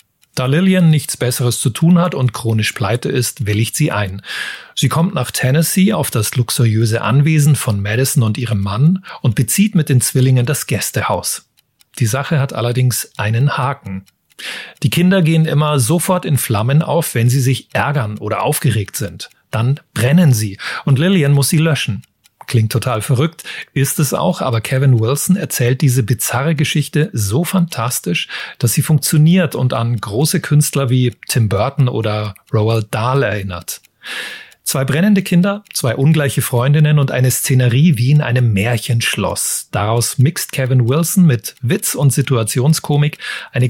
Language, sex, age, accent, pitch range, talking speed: German, male, 30-49, German, 120-155 Hz, 155 wpm